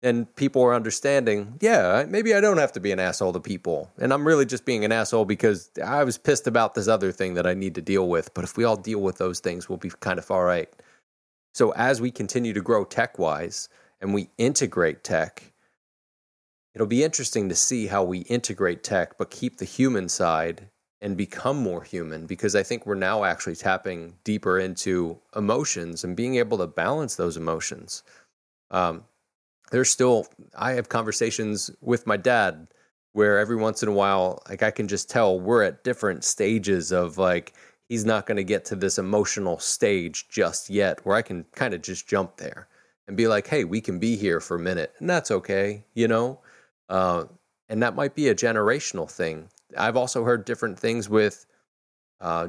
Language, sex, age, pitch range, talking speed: English, male, 30-49, 90-115 Hz, 195 wpm